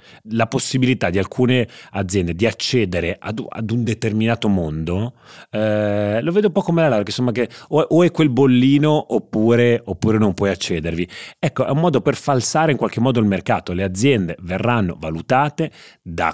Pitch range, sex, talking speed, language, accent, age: 100-125 Hz, male, 175 wpm, Italian, native, 30-49